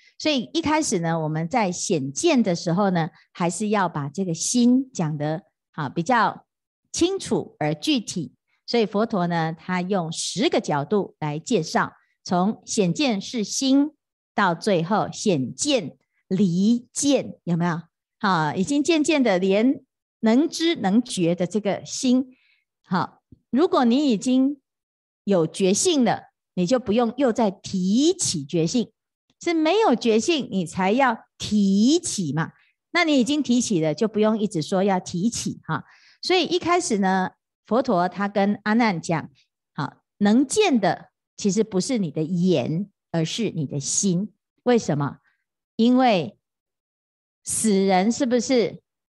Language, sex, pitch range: Chinese, female, 175-255 Hz